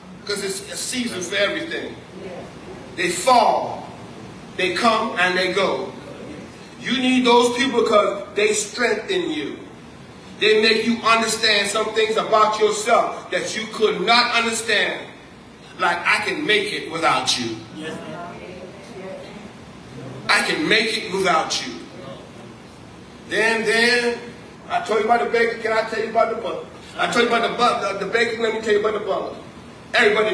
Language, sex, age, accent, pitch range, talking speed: English, male, 40-59, American, 210-265 Hz, 155 wpm